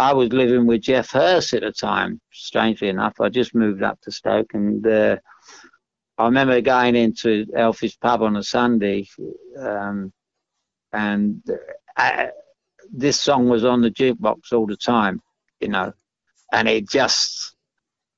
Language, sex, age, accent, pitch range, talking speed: English, male, 60-79, British, 110-130 Hz, 150 wpm